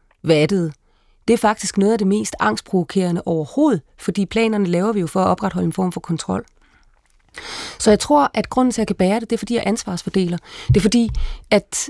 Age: 30-49